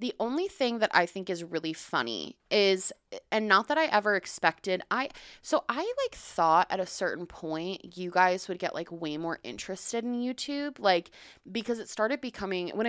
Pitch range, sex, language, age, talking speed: 170-230 Hz, female, English, 20-39, 190 wpm